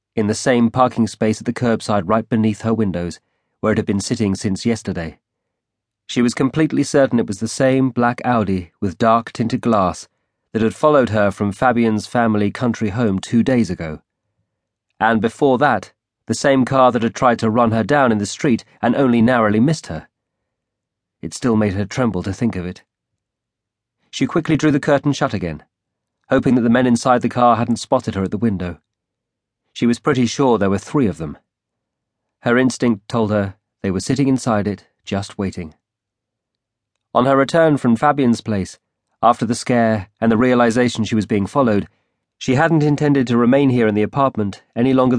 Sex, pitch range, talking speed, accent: male, 105-125 Hz, 185 wpm, British